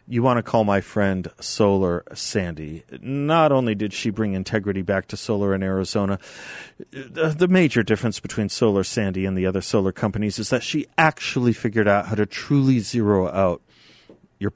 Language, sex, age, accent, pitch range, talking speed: English, male, 40-59, American, 95-125 Hz, 175 wpm